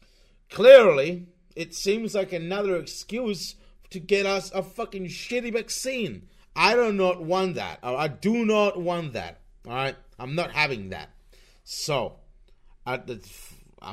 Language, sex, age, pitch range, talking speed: English, male, 30-49, 110-170 Hz, 135 wpm